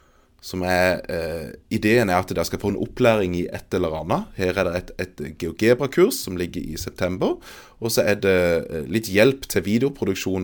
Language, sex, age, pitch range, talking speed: English, male, 30-49, 85-110 Hz, 205 wpm